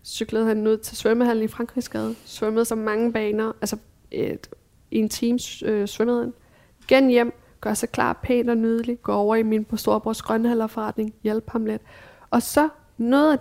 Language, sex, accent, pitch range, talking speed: Danish, female, native, 200-240 Hz, 180 wpm